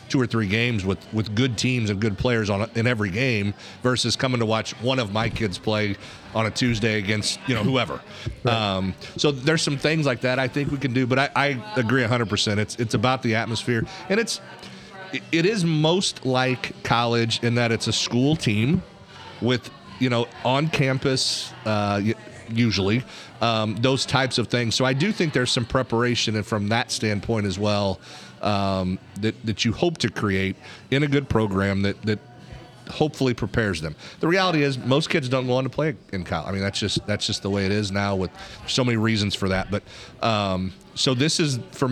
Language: English